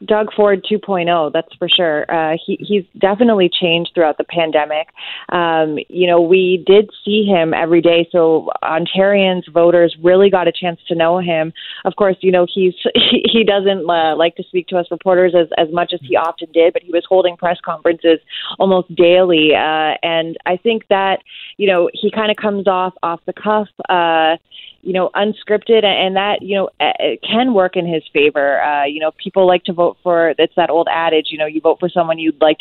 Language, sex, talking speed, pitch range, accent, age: English, female, 205 wpm, 160-190 Hz, American, 30-49